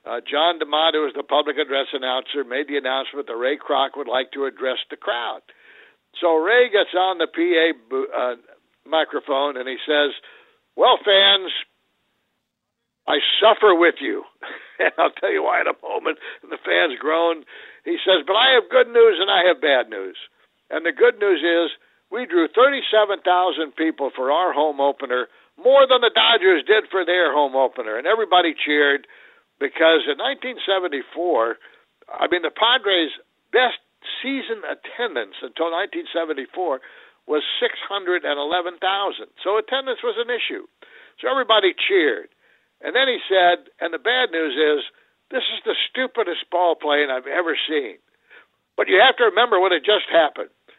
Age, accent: 60-79, American